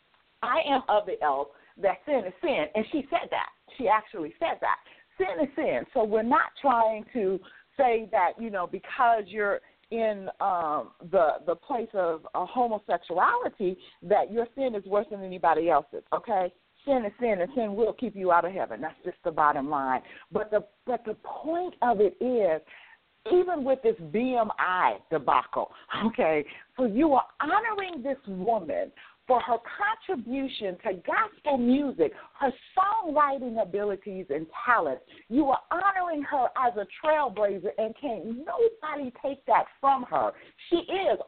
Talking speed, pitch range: 165 wpm, 210-315 Hz